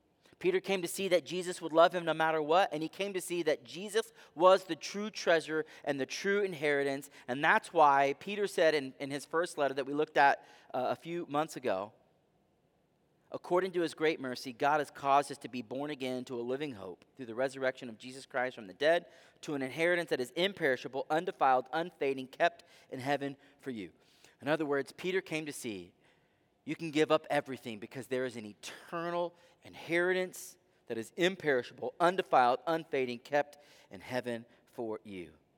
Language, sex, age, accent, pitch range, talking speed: English, male, 30-49, American, 130-170 Hz, 190 wpm